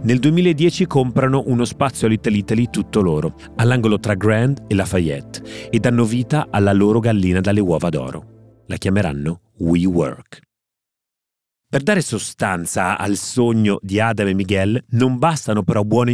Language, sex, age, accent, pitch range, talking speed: Italian, male, 30-49, native, 95-120 Hz, 150 wpm